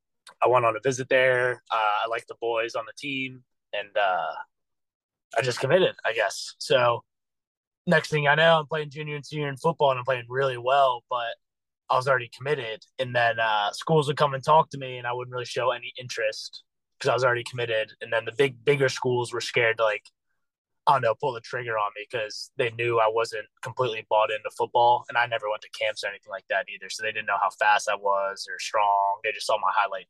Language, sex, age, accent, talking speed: English, male, 20-39, American, 235 wpm